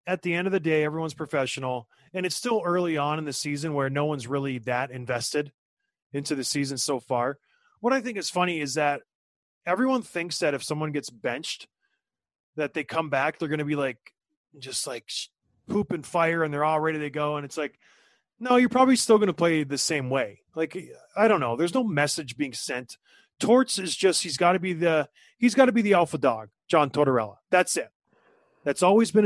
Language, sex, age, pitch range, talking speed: English, male, 30-49, 145-185 Hz, 215 wpm